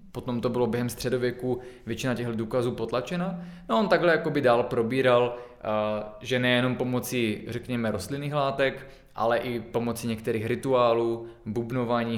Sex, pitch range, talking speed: male, 115-130 Hz, 140 wpm